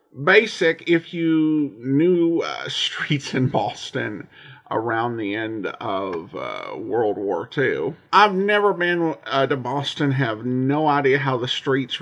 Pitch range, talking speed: 130-185 Hz, 140 wpm